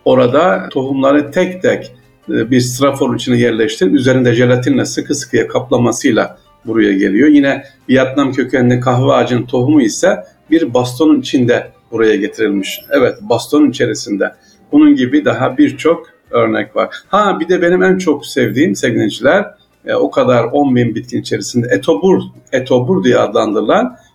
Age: 50-69